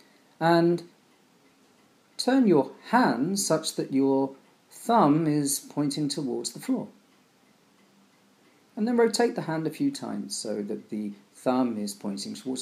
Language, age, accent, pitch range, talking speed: English, 40-59, British, 120-170 Hz, 135 wpm